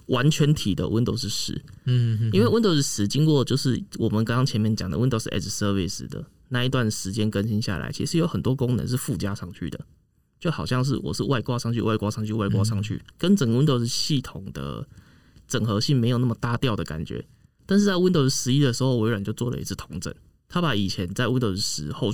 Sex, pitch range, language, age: male, 100-130 Hz, Chinese, 20-39